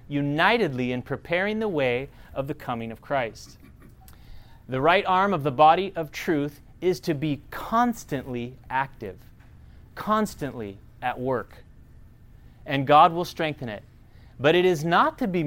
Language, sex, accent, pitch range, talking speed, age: English, male, American, 125-165 Hz, 145 wpm, 30-49